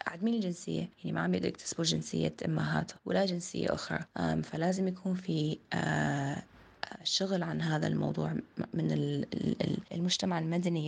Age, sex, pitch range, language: 20-39, female, 135-185 Hz, Arabic